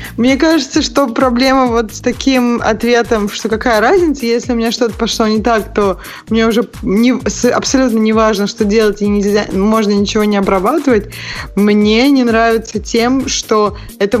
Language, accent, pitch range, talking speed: Russian, native, 210-255 Hz, 160 wpm